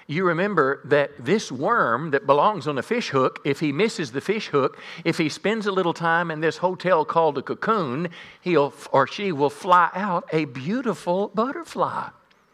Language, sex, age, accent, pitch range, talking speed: English, male, 50-69, American, 145-195 Hz, 180 wpm